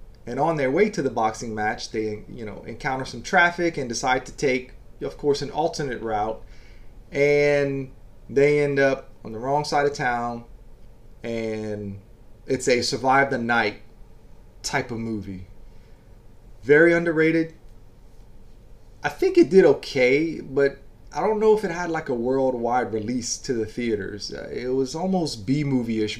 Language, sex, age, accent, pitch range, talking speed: English, male, 30-49, American, 110-140 Hz, 155 wpm